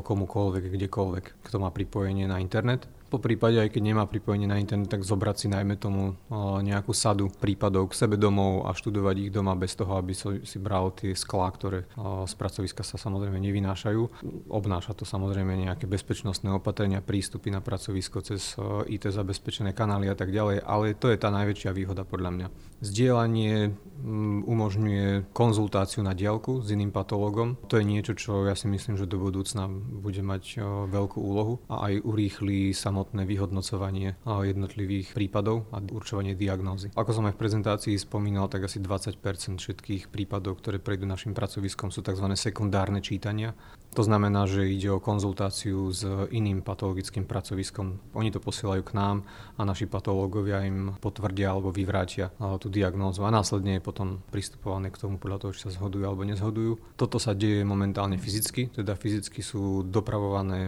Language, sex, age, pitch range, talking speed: Slovak, male, 30-49, 95-105 Hz, 160 wpm